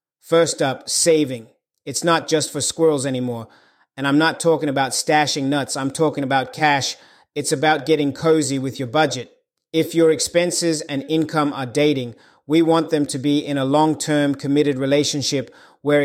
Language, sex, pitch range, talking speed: English, male, 135-155 Hz, 170 wpm